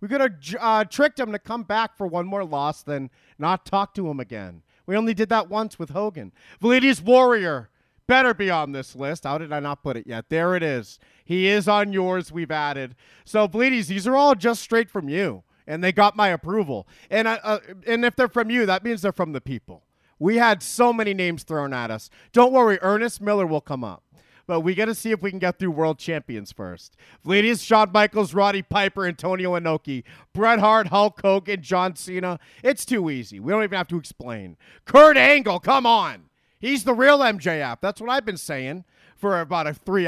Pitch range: 145-220 Hz